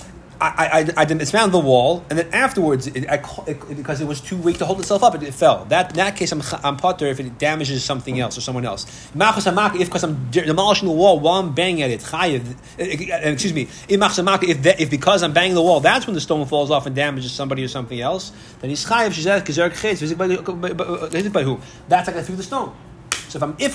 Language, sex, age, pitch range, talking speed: English, male, 30-49, 140-180 Hz, 205 wpm